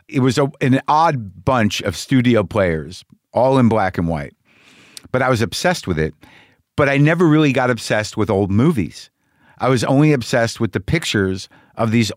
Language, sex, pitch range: English, male, 105-135 Hz